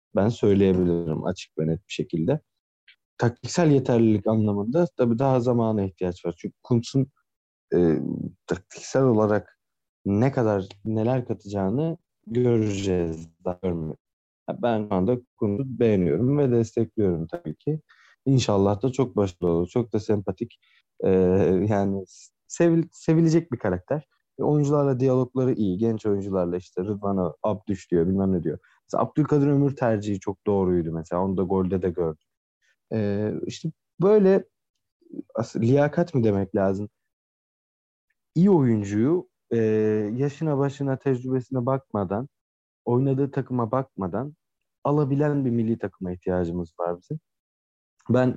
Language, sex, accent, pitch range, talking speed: Turkish, male, native, 95-130 Hz, 120 wpm